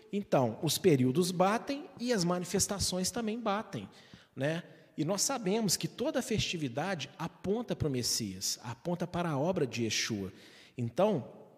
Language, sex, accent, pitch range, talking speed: Portuguese, male, Brazilian, 125-170 Hz, 145 wpm